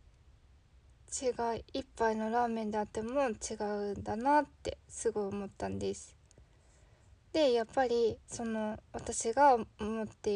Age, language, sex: 20-39, Japanese, female